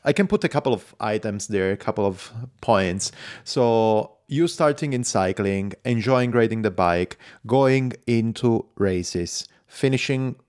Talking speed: 145 wpm